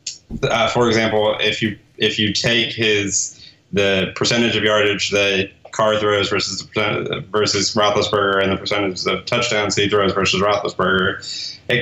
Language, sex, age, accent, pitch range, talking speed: English, male, 20-39, American, 100-115 Hz, 150 wpm